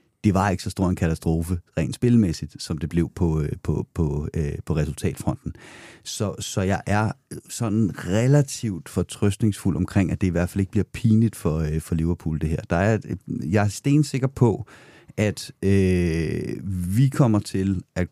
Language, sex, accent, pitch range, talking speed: Danish, male, native, 90-110 Hz, 175 wpm